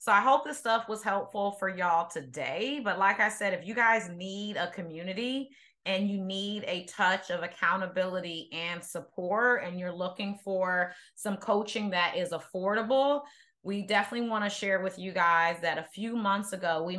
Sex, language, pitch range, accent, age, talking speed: female, English, 170-210 Hz, American, 30-49, 185 wpm